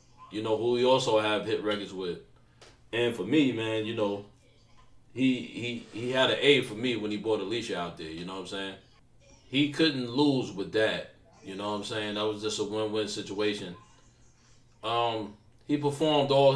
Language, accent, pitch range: English, American, 105-125 Hz